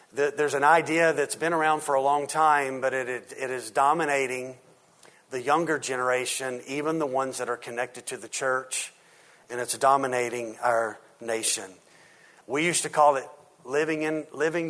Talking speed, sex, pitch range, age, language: 160 wpm, male, 125-145 Hz, 40-59, English